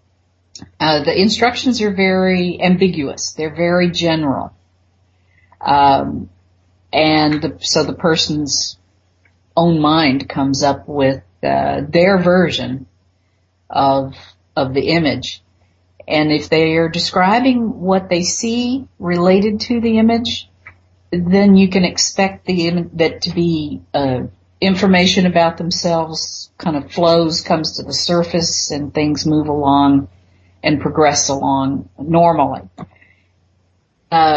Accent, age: American, 50-69